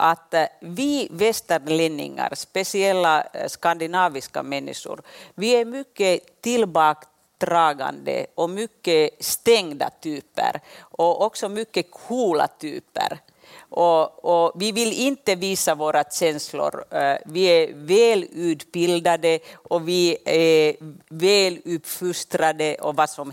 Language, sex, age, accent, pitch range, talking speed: English, female, 50-69, Finnish, 165-230 Hz, 100 wpm